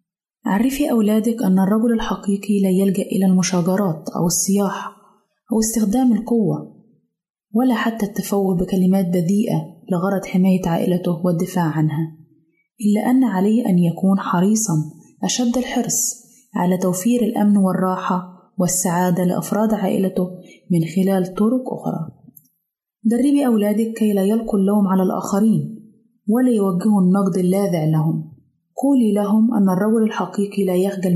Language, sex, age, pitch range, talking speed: Arabic, female, 20-39, 185-225 Hz, 120 wpm